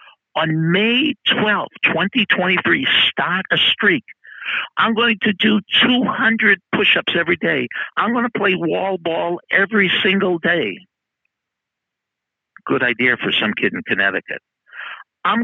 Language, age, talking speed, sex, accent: English, 60-79, 120 wpm, male, American